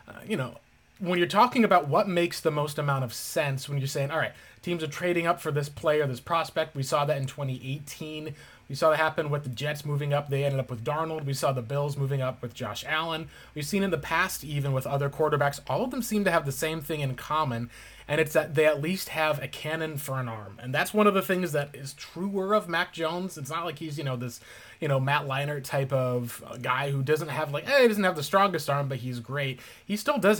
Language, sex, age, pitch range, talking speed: English, male, 30-49, 130-165 Hz, 265 wpm